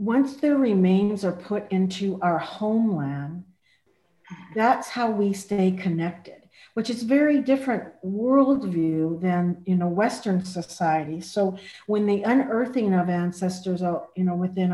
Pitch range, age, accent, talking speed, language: 180-225 Hz, 50-69, American, 140 wpm, English